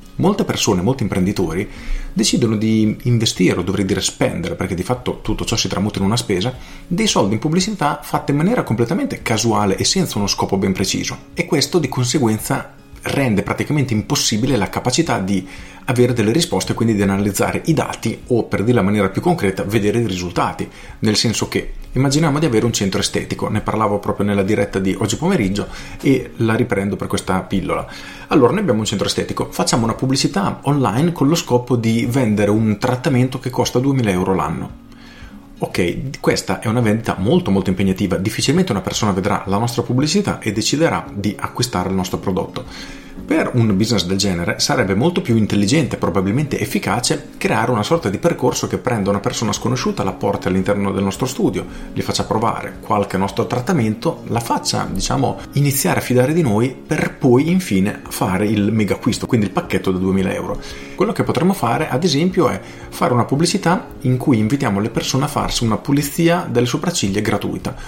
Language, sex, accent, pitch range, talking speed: Italian, male, native, 100-130 Hz, 185 wpm